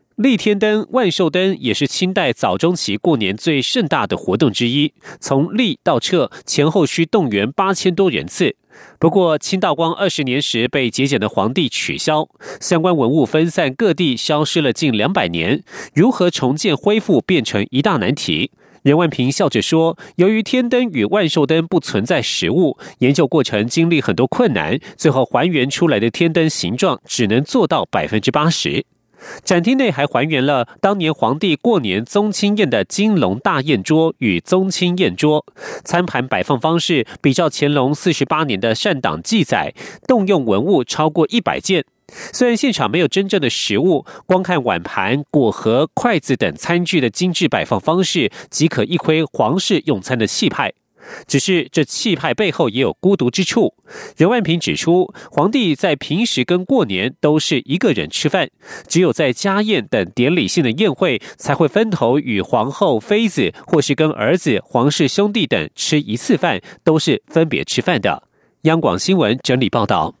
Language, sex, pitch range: German, male, 145-195 Hz